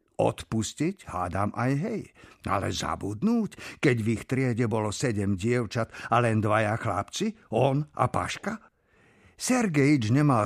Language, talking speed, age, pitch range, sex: Slovak, 125 wpm, 50-69, 100-140 Hz, male